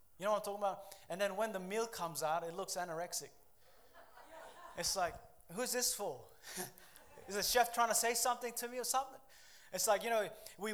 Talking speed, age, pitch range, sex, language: 205 wpm, 20-39, 180-220 Hz, male, English